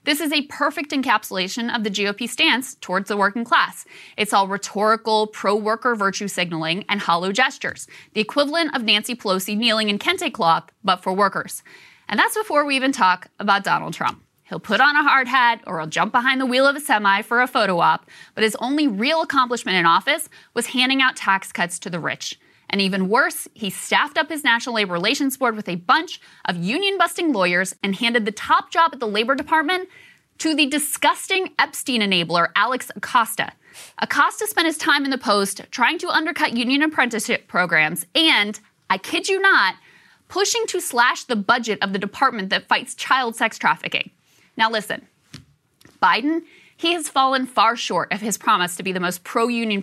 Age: 20-39